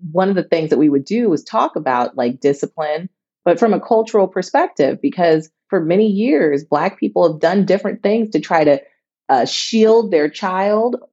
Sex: female